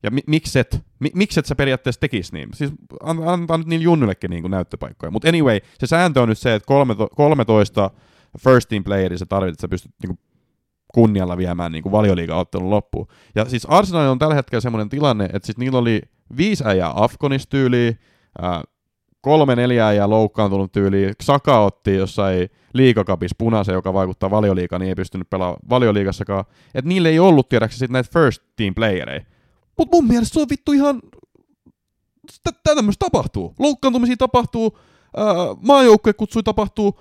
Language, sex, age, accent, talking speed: Finnish, male, 30-49, native, 150 wpm